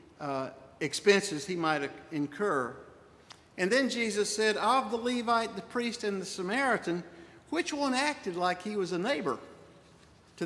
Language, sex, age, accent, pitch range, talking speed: English, male, 60-79, American, 145-205 Hz, 150 wpm